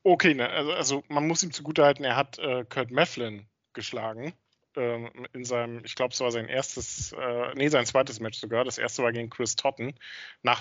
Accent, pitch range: German, 125-160 Hz